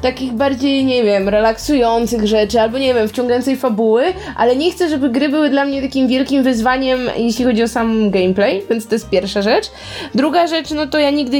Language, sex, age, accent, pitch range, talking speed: Polish, female, 20-39, native, 200-265 Hz, 200 wpm